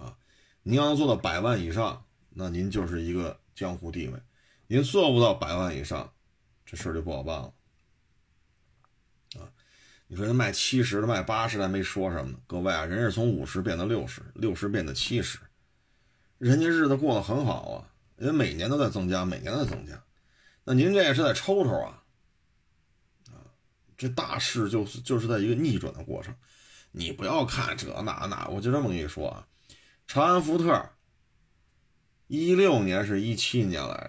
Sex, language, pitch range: male, Chinese, 95-130 Hz